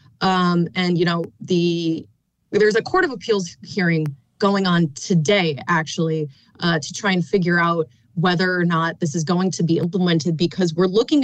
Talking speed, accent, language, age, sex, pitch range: 175 wpm, American, English, 30-49, female, 160-205 Hz